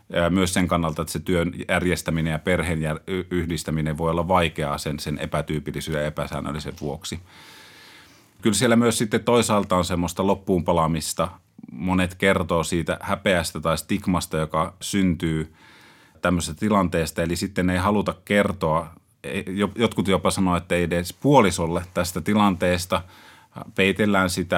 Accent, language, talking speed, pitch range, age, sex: native, Finnish, 130 wpm, 80-90 Hz, 30-49, male